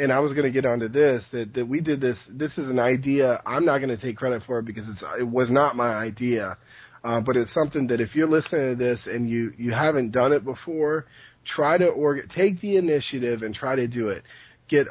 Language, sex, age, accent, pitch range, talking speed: English, male, 40-59, American, 115-145 Hz, 245 wpm